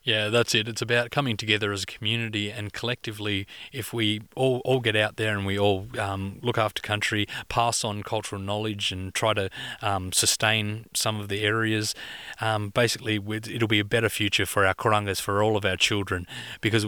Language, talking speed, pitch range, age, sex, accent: English, 195 wpm, 100-115 Hz, 30-49, male, Australian